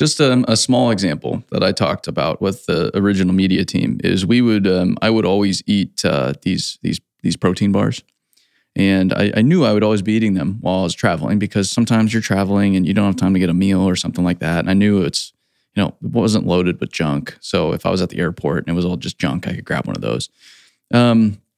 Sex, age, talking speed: male, 20-39, 250 wpm